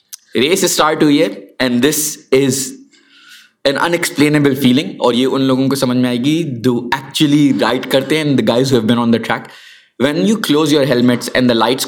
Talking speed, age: 180 wpm, 20-39